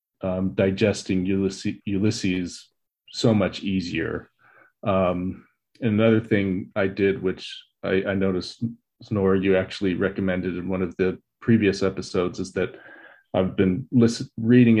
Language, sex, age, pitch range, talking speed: English, male, 30-49, 90-110 Hz, 125 wpm